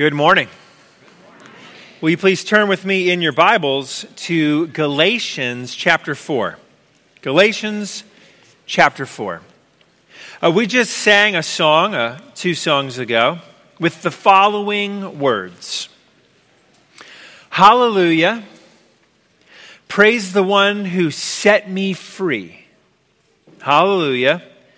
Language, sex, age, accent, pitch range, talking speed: English, male, 40-59, American, 165-205 Hz, 100 wpm